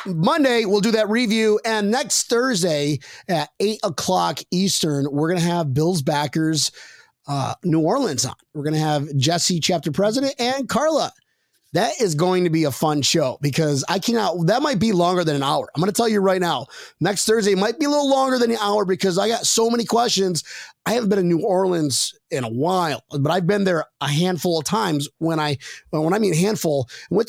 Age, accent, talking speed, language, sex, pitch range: 30-49, American, 210 wpm, English, male, 155-210 Hz